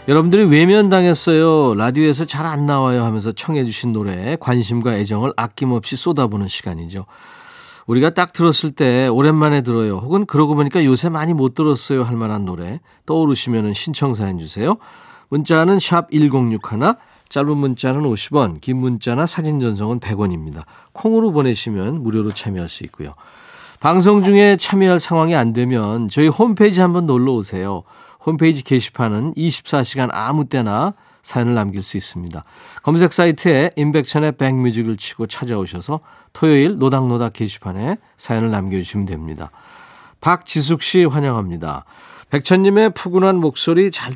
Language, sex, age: Korean, male, 40-59